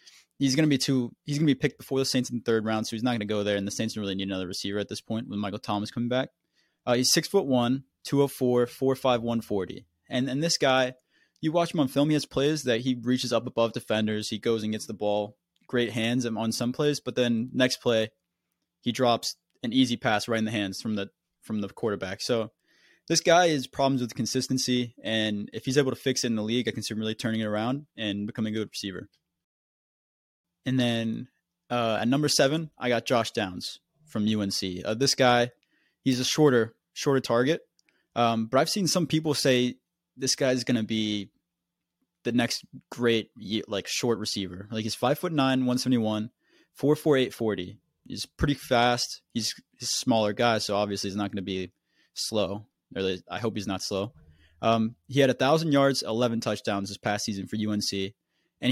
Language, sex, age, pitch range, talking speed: English, male, 20-39, 105-130 Hz, 215 wpm